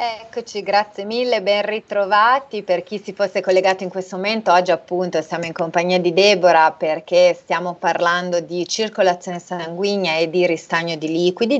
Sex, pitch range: female, 160-185 Hz